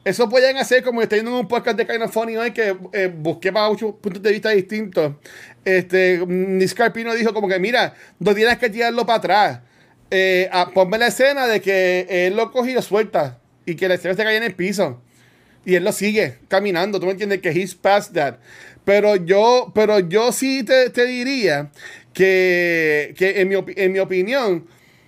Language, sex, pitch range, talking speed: Spanish, male, 180-220 Hz, 195 wpm